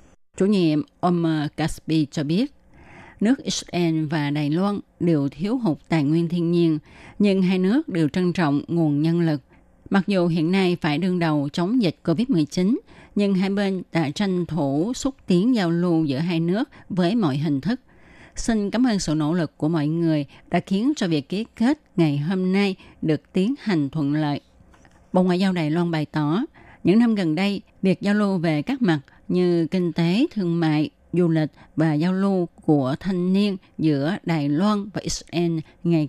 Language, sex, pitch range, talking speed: Vietnamese, female, 155-195 Hz, 190 wpm